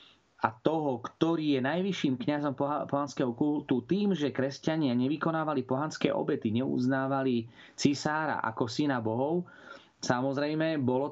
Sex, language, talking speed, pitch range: male, Slovak, 120 wpm, 120-145 Hz